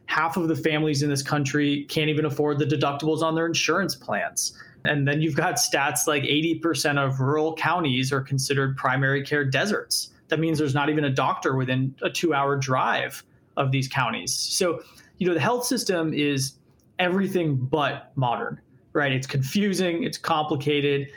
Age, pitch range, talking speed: 20-39, 130-155 Hz, 170 wpm